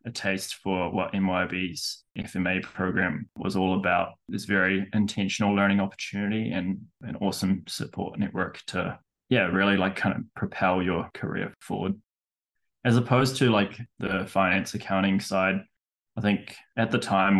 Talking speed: 150 wpm